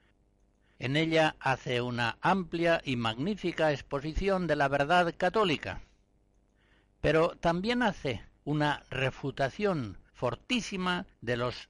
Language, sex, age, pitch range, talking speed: Spanish, male, 60-79, 115-170 Hz, 105 wpm